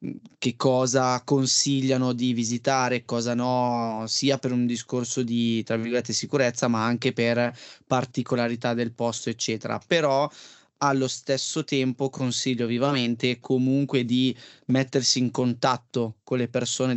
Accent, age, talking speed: native, 20-39, 120 wpm